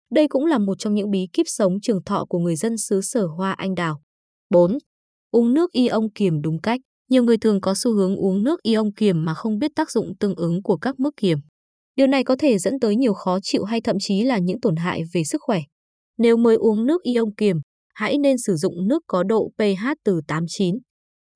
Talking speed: 230 wpm